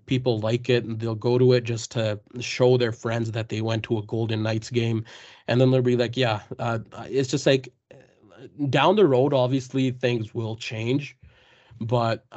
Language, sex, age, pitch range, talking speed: English, male, 20-39, 110-130 Hz, 190 wpm